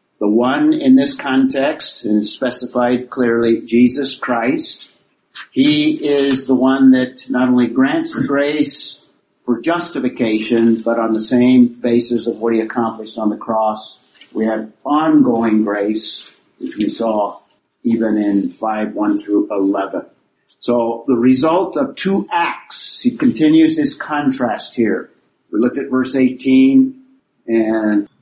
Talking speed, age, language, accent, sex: 135 wpm, 50-69, English, American, male